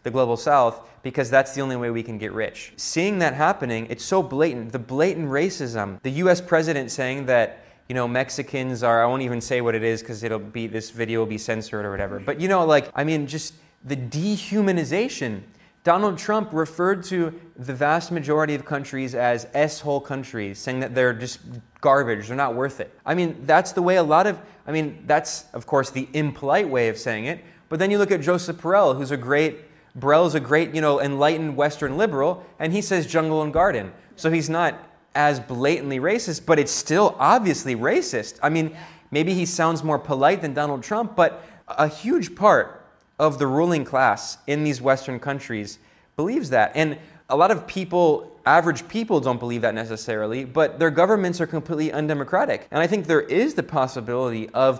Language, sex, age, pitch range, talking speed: English, male, 20-39, 125-165 Hz, 195 wpm